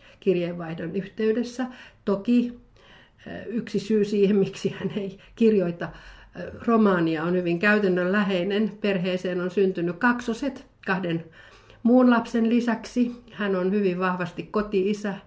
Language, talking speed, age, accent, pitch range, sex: Finnish, 105 wpm, 50-69, native, 170-205 Hz, female